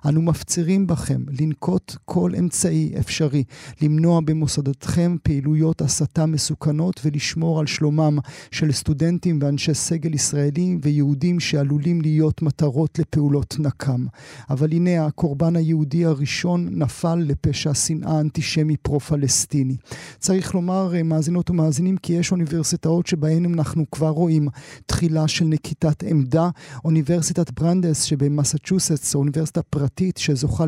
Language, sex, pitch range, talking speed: Hebrew, male, 145-165 Hz, 115 wpm